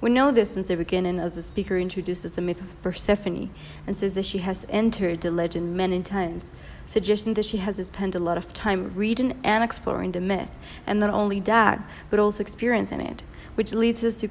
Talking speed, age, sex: 210 wpm, 20-39, female